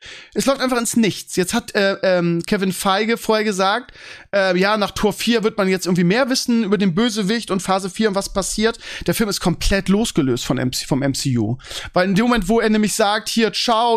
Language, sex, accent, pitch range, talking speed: German, male, German, 165-220 Hz, 215 wpm